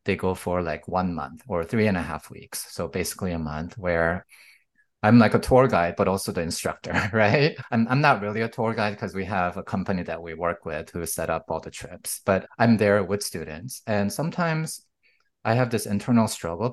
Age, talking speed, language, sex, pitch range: 30-49, 220 wpm, English, male, 90-115 Hz